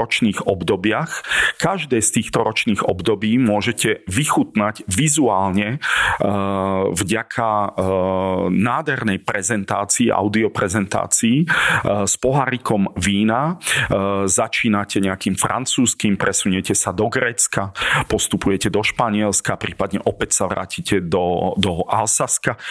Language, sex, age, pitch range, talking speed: Slovak, male, 40-59, 95-105 Hz, 90 wpm